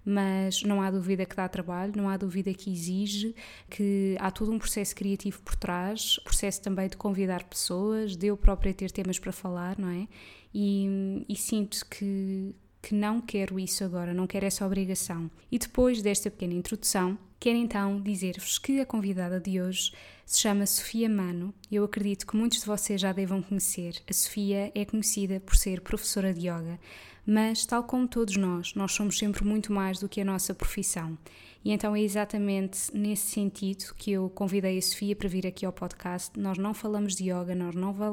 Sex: female